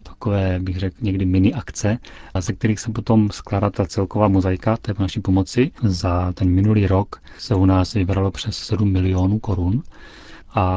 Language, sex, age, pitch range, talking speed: Czech, male, 30-49, 90-110 Hz, 175 wpm